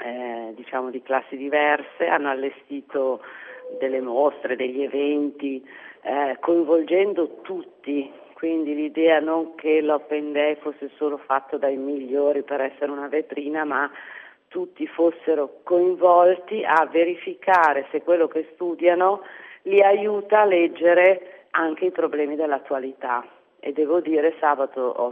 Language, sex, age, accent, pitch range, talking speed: Italian, female, 40-59, native, 135-165 Hz, 125 wpm